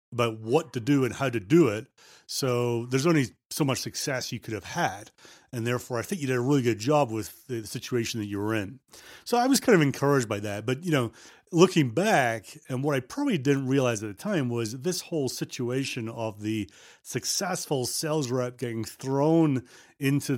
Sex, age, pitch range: male, 40-59, 120-155 Hz